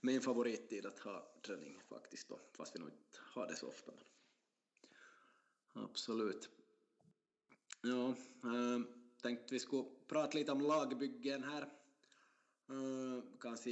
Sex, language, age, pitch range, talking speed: male, Swedish, 20-39, 115-130 Hz, 120 wpm